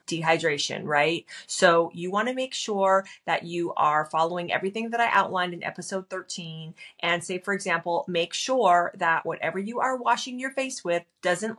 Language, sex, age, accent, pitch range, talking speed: English, female, 30-49, American, 170-205 Hz, 175 wpm